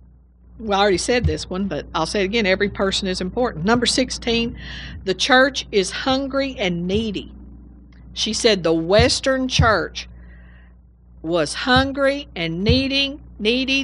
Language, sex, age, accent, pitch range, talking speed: English, female, 50-69, American, 145-225 Hz, 145 wpm